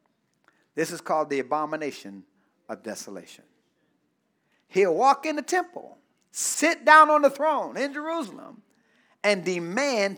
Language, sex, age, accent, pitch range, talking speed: English, male, 50-69, American, 255-360 Hz, 125 wpm